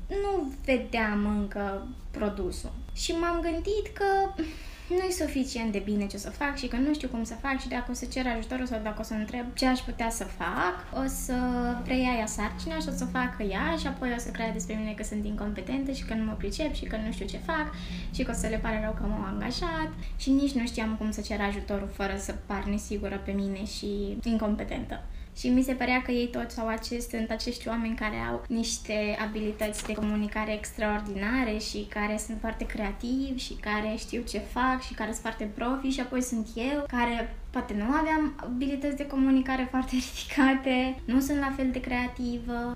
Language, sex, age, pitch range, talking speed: Romanian, female, 20-39, 210-255 Hz, 210 wpm